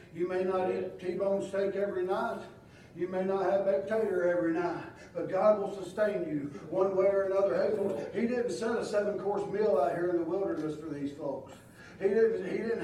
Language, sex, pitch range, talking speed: English, male, 195-235 Hz, 190 wpm